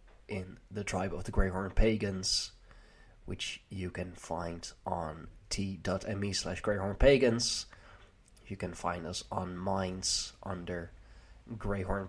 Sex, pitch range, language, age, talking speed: male, 90-105 Hz, English, 20-39, 120 wpm